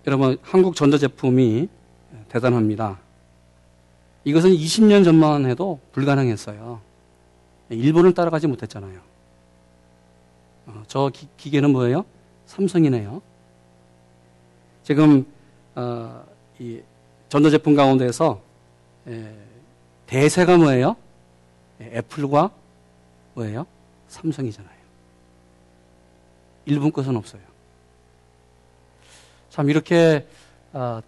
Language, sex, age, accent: Korean, male, 40-59, native